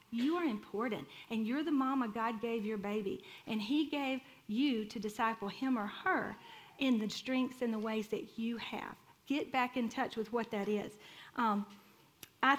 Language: English